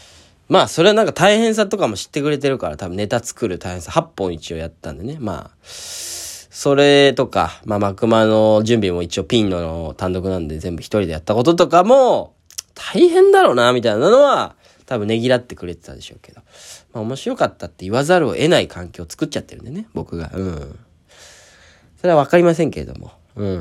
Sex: male